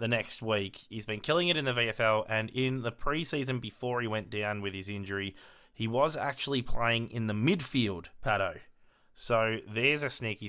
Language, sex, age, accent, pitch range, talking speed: English, male, 20-39, Australian, 100-130 Hz, 190 wpm